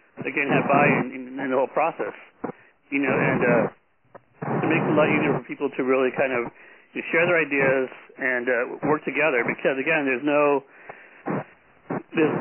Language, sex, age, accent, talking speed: English, male, 60-79, American, 185 wpm